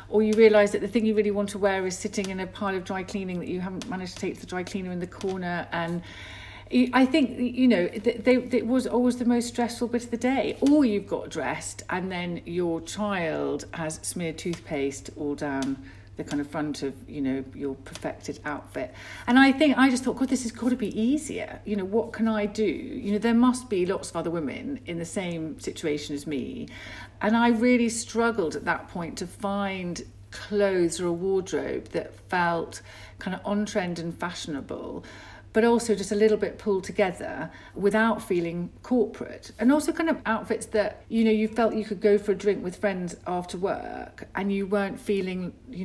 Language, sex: English, female